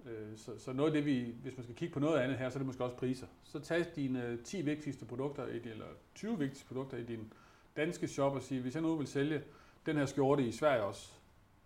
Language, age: Danish, 40-59